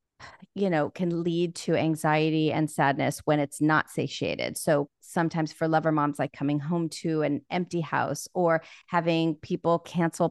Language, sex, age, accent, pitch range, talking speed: English, female, 30-49, American, 155-190 Hz, 165 wpm